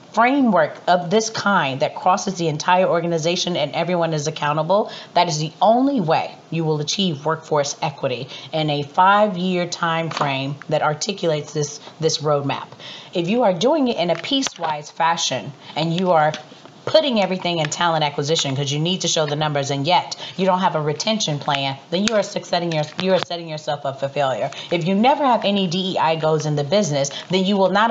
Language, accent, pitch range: English, American, 150-185 Hz